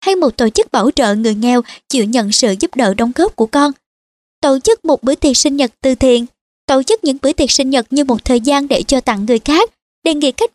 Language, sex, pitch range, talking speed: Vietnamese, male, 240-295 Hz, 255 wpm